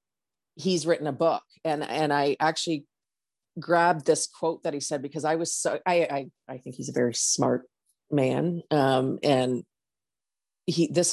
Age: 40-59